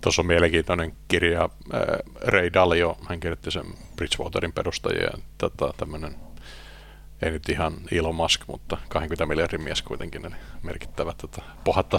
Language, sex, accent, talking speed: Finnish, male, native, 130 wpm